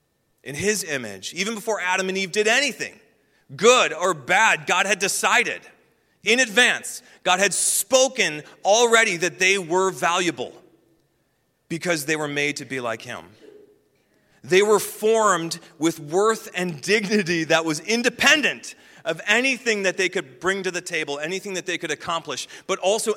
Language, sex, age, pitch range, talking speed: English, male, 30-49, 125-190 Hz, 155 wpm